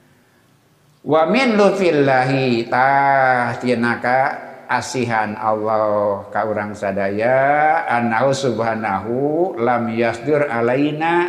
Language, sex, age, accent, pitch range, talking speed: Indonesian, male, 50-69, native, 110-135 Hz, 70 wpm